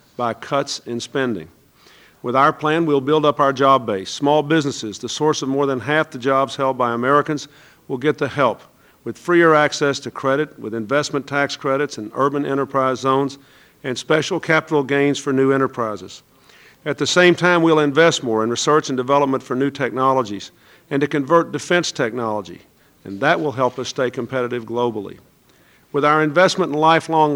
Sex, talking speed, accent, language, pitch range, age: male, 180 wpm, American, English, 120-150 Hz, 50-69